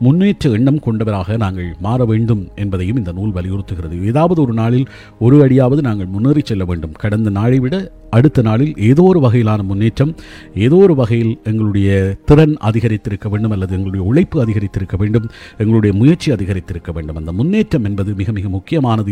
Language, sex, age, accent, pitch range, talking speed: Tamil, male, 50-69, native, 100-135 Hz, 150 wpm